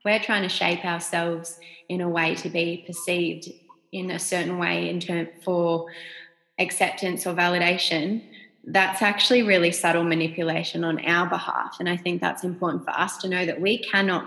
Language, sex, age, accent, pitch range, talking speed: English, female, 20-39, Australian, 175-215 Hz, 175 wpm